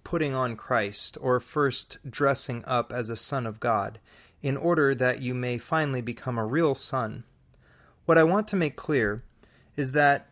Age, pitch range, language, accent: 30-49, 110-140 Hz, English, American